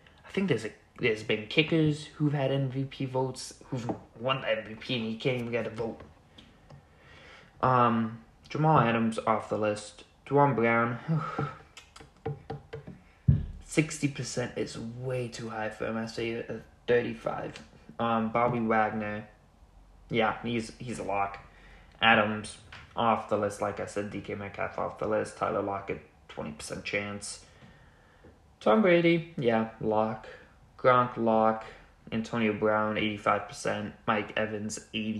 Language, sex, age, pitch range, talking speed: English, male, 20-39, 105-125 Hz, 135 wpm